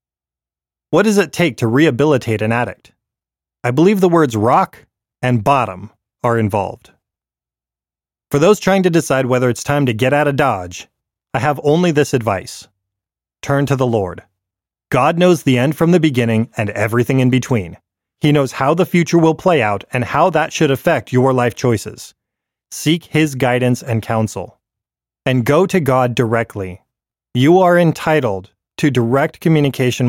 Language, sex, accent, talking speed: English, male, American, 165 wpm